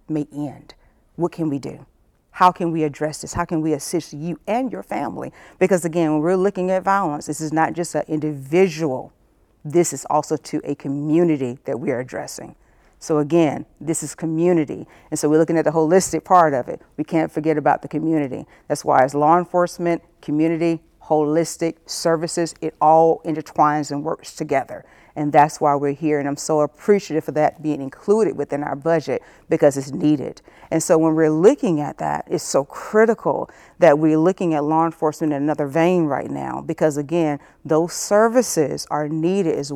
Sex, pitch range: female, 150-175 Hz